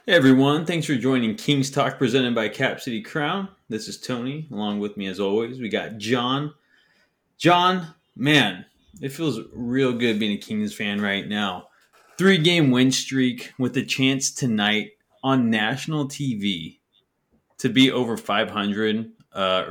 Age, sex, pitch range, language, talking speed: 20-39, male, 95-135 Hz, English, 155 wpm